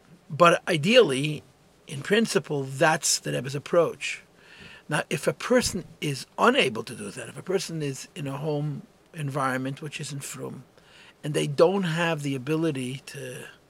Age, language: 50-69, English